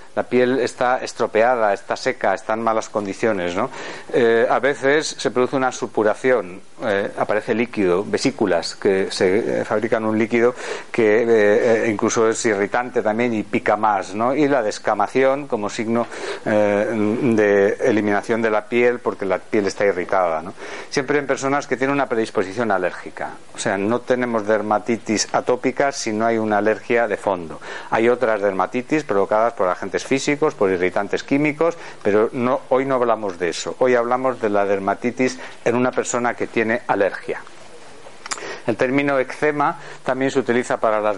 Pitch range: 110-135 Hz